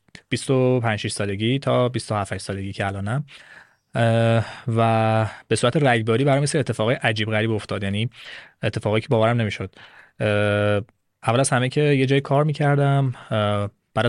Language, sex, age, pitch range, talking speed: Persian, male, 20-39, 105-130 Hz, 140 wpm